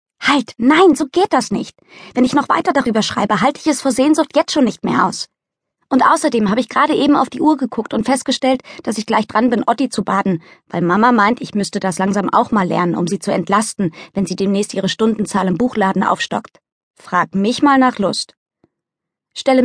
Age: 20-39